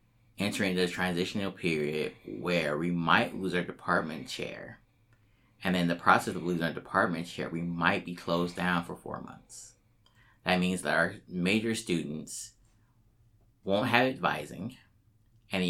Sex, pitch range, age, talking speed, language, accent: male, 90-115 Hz, 20-39, 155 wpm, English, American